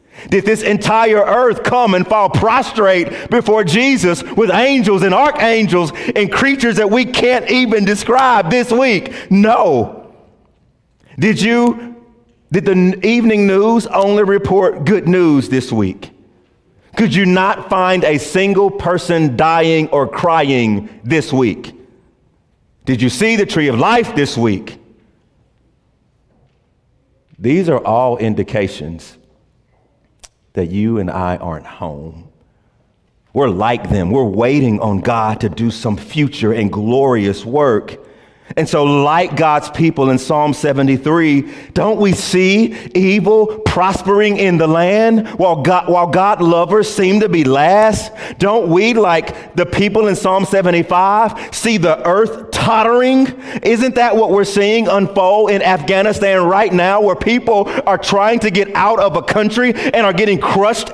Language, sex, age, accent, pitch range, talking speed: English, male, 40-59, American, 155-220 Hz, 140 wpm